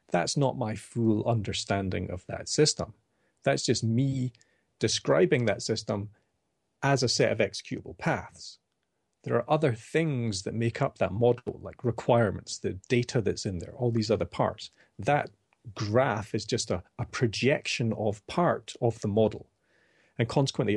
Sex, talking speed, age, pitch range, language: male, 155 wpm, 40-59, 105-135 Hz, English